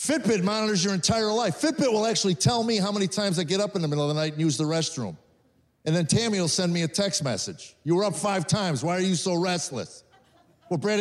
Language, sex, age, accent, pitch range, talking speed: English, male, 50-69, American, 175-220 Hz, 255 wpm